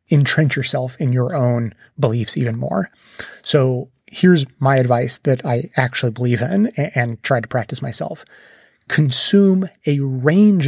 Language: English